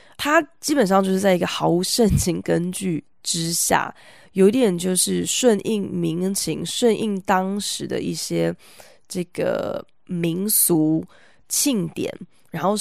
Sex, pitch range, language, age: female, 165-215 Hz, Chinese, 20-39